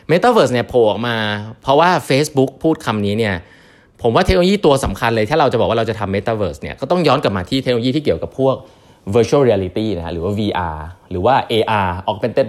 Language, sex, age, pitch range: Thai, male, 20-39, 100-155 Hz